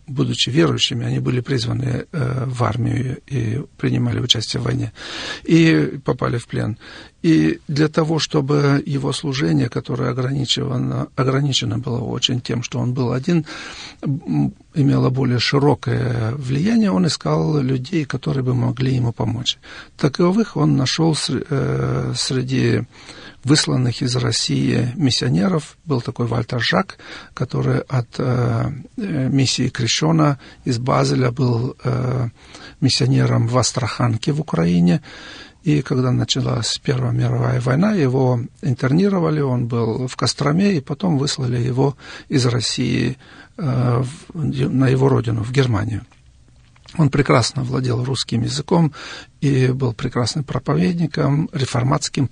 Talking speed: 120 wpm